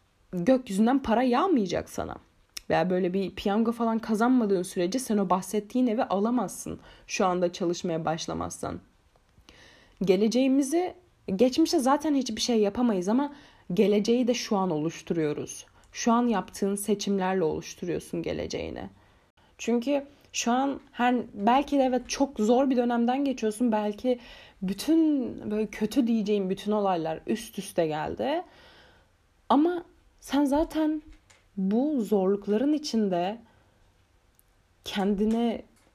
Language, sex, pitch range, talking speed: Turkish, female, 195-255 Hz, 115 wpm